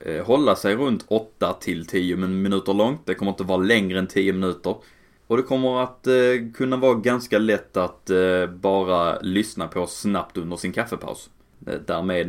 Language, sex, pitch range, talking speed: Swedish, male, 90-110 Hz, 155 wpm